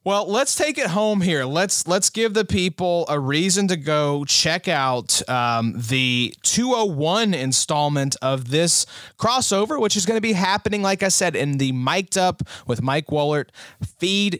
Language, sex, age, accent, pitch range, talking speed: English, male, 30-49, American, 140-200 Hz, 170 wpm